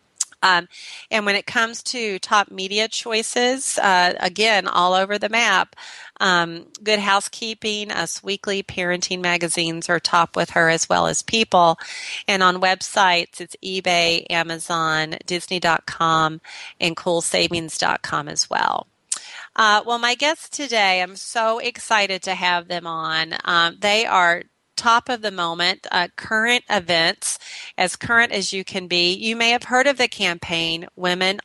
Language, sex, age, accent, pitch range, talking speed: English, female, 30-49, American, 175-230 Hz, 145 wpm